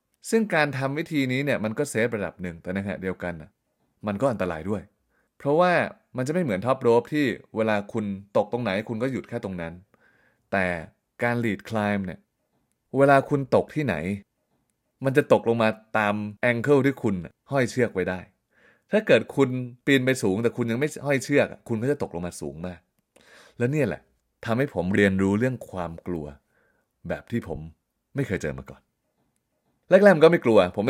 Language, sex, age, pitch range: Thai, male, 20-39, 90-125 Hz